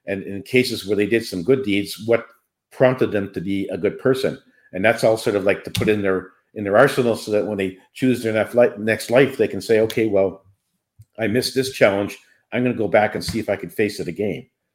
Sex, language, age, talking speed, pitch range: male, English, 50-69, 245 wpm, 95-115 Hz